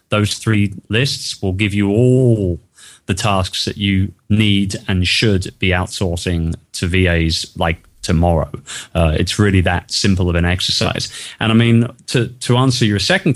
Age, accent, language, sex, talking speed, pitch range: 30-49, British, English, male, 160 wpm, 95-115 Hz